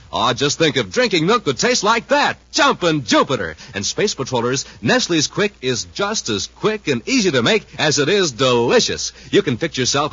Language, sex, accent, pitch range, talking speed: English, male, American, 145-220 Hz, 195 wpm